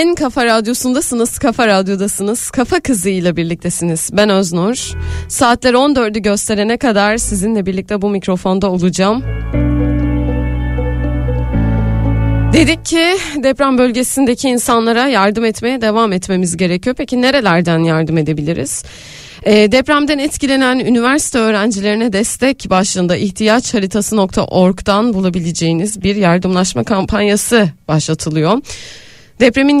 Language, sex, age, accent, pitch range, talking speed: Turkish, female, 30-49, native, 185-245 Hz, 95 wpm